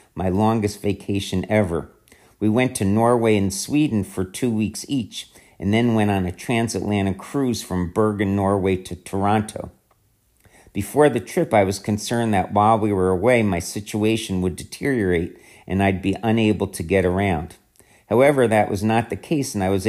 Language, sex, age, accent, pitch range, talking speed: English, male, 50-69, American, 95-110 Hz, 170 wpm